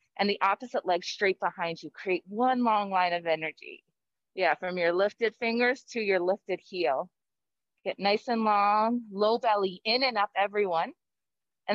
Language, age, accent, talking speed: English, 30-49, American, 170 wpm